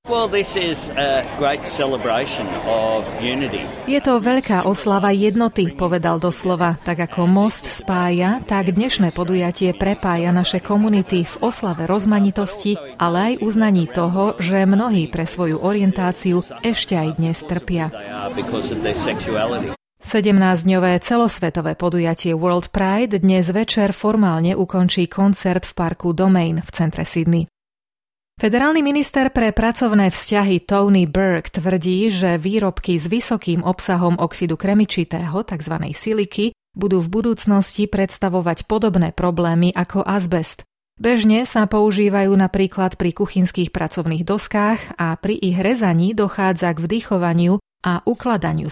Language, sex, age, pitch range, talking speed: Slovak, female, 30-49, 175-205 Hz, 110 wpm